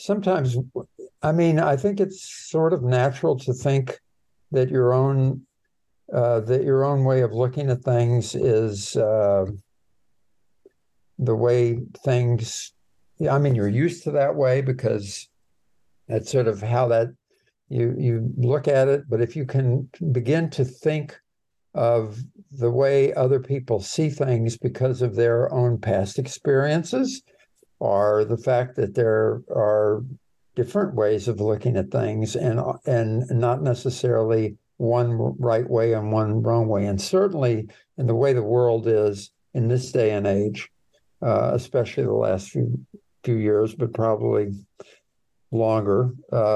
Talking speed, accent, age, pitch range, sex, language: 145 wpm, American, 60-79, 115-135 Hz, male, English